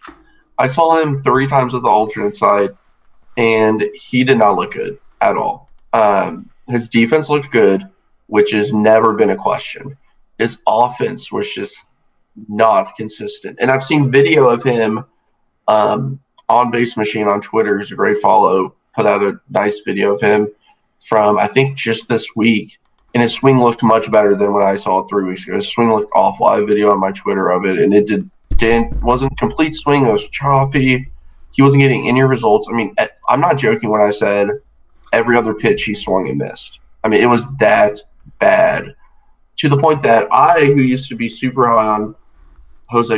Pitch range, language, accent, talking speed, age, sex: 105-135 Hz, English, American, 190 wpm, 20-39, male